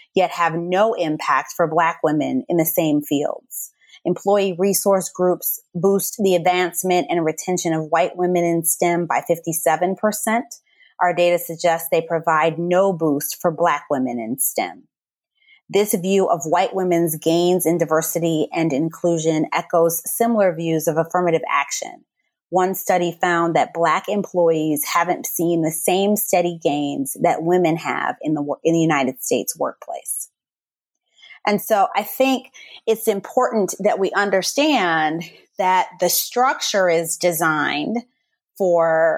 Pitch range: 165-195 Hz